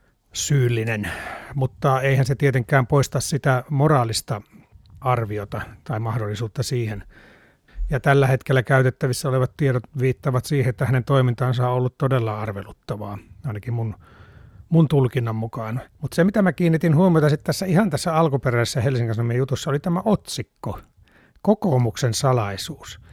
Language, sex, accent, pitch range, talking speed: Finnish, male, native, 115-145 Hz, 130 wpm